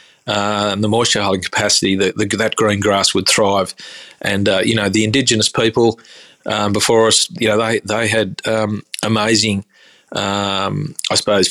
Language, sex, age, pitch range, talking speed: English, male, 30-49, 105-115 Hz, 165 wpm